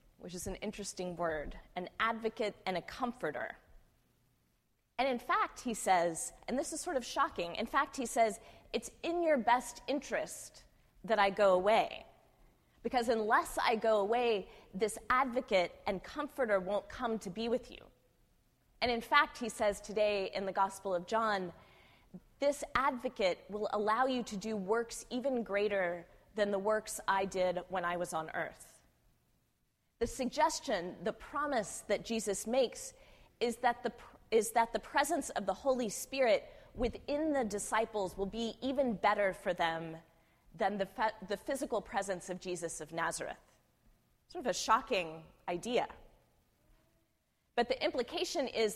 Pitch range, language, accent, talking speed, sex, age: 190-245 Hz, English, American, 155 wpm, female, 20-39